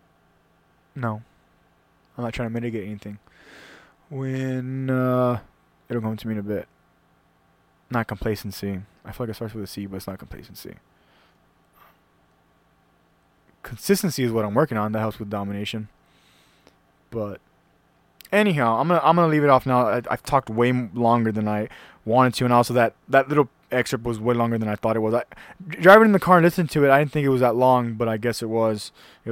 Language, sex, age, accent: English, male, 20-39, American